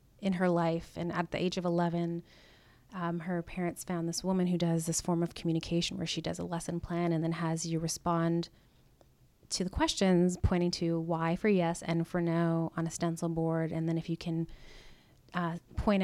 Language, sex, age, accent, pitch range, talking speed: English, female, 30-49, American, 165-180 Hz, 200 wpm